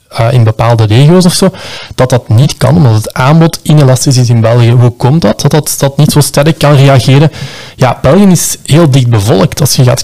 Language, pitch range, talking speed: Dutch, 120-145 Hz, 220 wpm